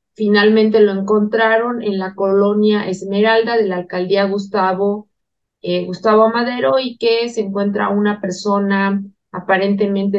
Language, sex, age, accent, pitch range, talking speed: Spanish, female, 30-49, Mexican, 195-230 Hz, 125 wpm